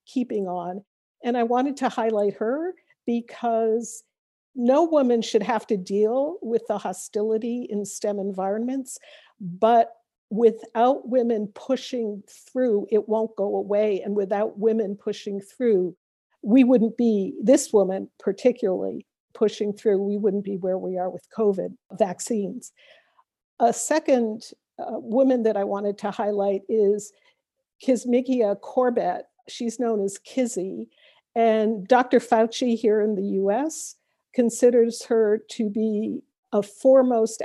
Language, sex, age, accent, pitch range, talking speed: English, female, 50-69, American, 205-245 Hz, 130 wpm